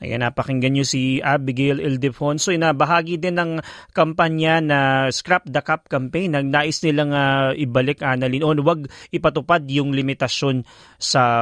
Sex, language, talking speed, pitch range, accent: male, Filipino, 160 wpm, 135-175 Hz, native